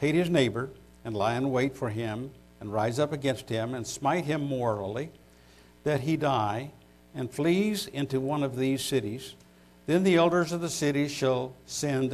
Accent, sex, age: American, male, 60-79